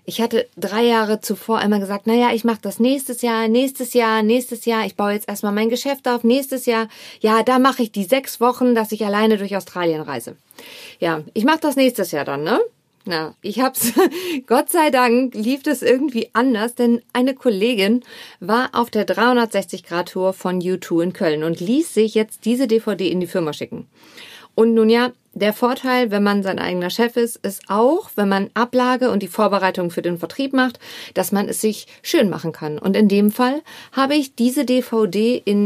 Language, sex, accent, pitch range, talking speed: German, female, German, 195-250 Hz, 200 wpm